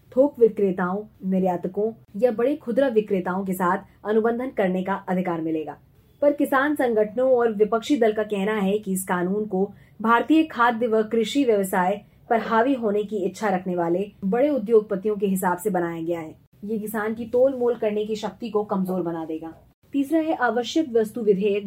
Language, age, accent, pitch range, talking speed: Hindi, 20-39, native, 195-240 Hz, 175 wpm